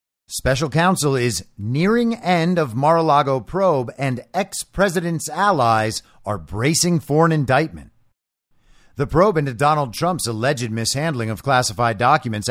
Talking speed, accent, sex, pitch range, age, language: 125 wpm, American, male, 120-165 Hz, 50-69, English